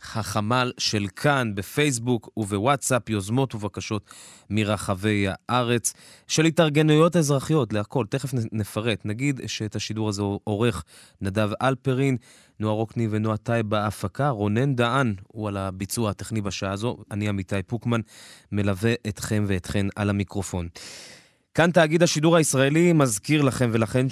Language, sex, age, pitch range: Hebrew, male, 20-39, 105-130 Hz